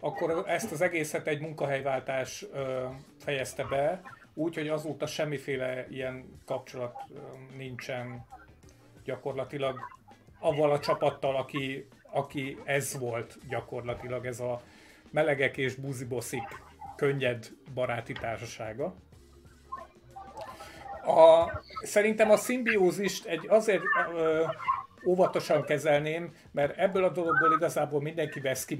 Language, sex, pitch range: Hungarian, male, 130-160 Hz